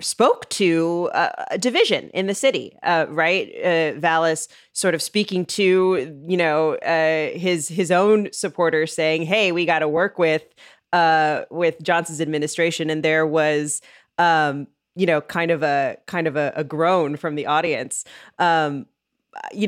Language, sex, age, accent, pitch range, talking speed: English, female, 20-39, American, 160-220 Hz, 160 wpm